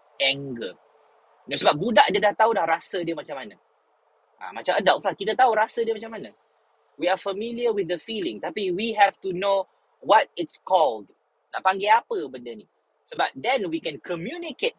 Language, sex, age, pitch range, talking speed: Malay, male, 20-39, 155-225 Hz, 185 wpm